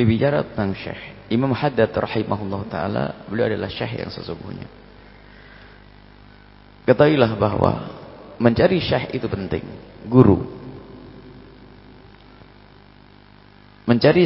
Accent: Indonesian